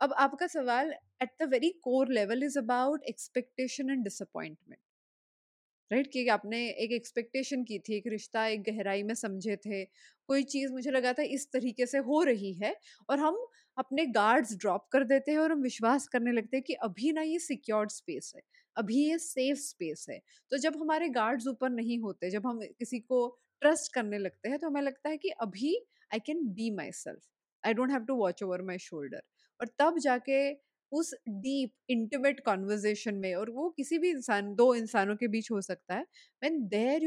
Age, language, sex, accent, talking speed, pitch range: 20-39, English, female, Indian, 145 wpm, 215-280 Hz